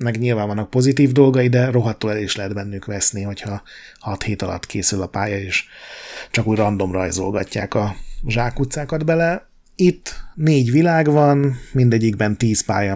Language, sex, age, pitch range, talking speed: Hungarian, male, 30-49, 100-130 Hz, 155 wpm